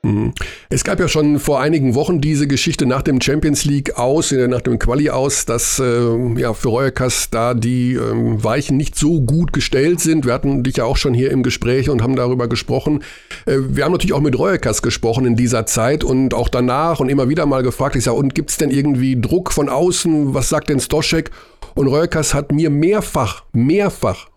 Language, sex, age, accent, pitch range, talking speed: German, male, 50-69, German, 125-160 Hz, 200 wpm